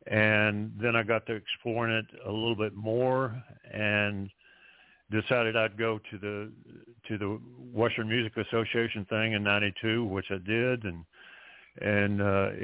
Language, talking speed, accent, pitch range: English, 145 wpm, American, 100-115 Hz